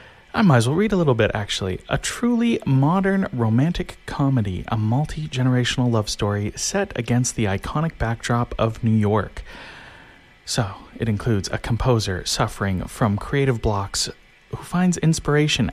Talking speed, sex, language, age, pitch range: 145 wpm, male, English, 30-49, 105-145 Hz